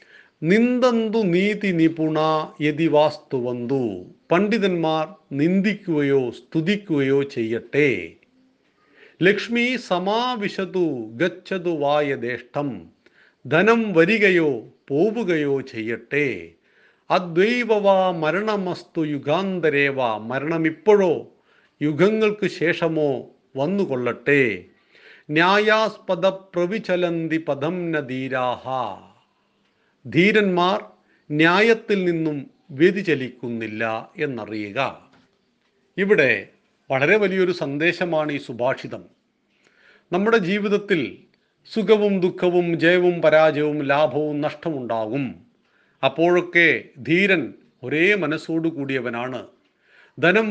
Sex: male